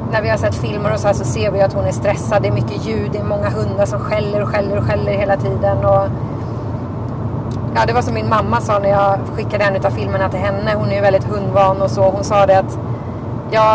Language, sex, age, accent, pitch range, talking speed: Swedish, female, 30-49, native, 110-130 Hz, 255 wpm